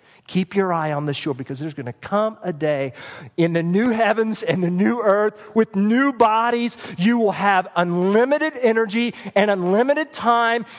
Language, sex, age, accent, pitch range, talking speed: English, male, 40-59, American, 130-185 Hz, 180 wpm